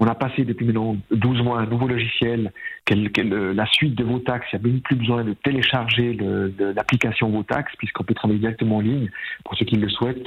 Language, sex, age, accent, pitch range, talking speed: French, male, 50-69, French, 110-135 Hz, 240 wpm